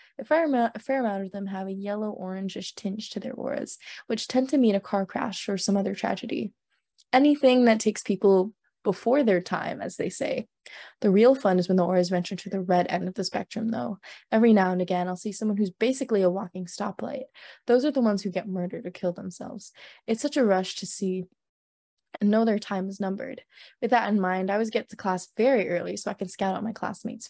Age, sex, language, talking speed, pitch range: 20-39, female, English, 225 wpm, 185-230 Hz